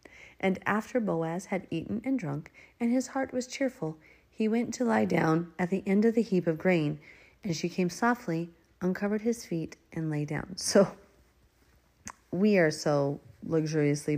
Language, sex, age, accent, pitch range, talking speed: English, female, 40-59, American, 150-200 Hz, 170 wpm